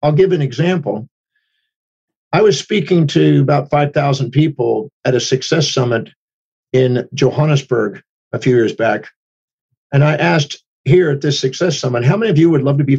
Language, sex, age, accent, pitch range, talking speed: English, male, 50-69, American, 135-175 Hz, 170 wpm